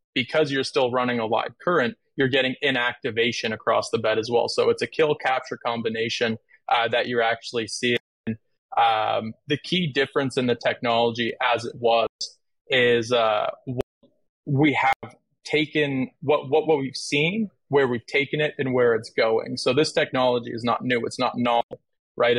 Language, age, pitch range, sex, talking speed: English, 20-39, 115-140 Hz, male, 175 wpm